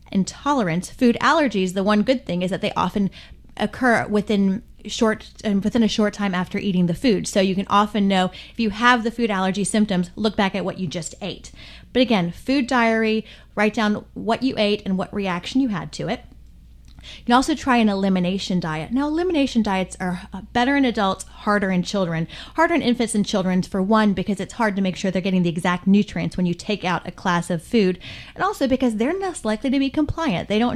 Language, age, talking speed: English, 30-49, 215 wpm